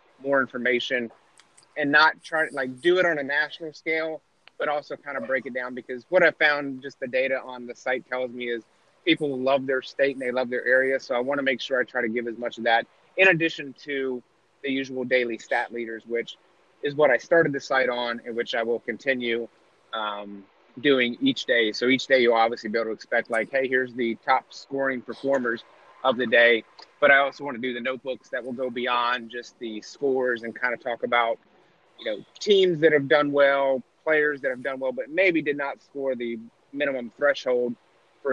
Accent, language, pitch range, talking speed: American, English, 120-140 Hz, 220 wpm